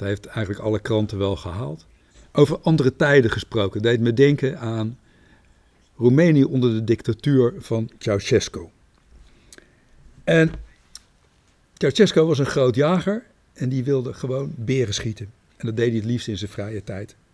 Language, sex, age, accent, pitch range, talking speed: Dutch, male, 60-79, Dutch, 115-145 Hz, 150 wpm